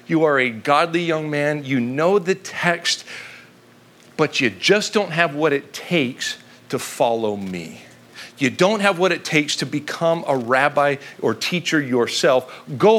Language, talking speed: English, 160 wpm